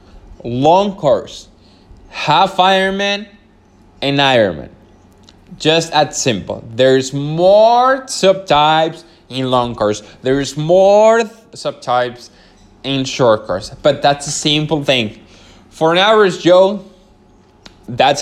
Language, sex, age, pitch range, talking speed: English, male, 20-39, 115-160 Hz, 105 wpm